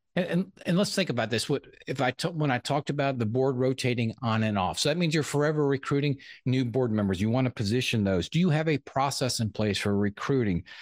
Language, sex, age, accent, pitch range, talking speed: English, male, 50-69, American, 110-145 Hz, 240 wpm